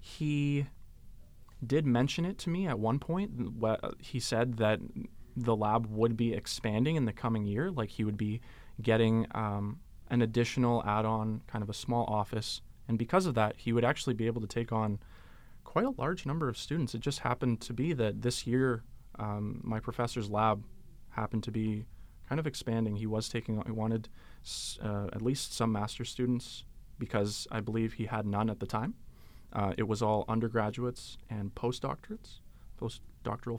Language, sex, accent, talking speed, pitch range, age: English, male, American, 180 wpm, 110-125 Hz, 20-39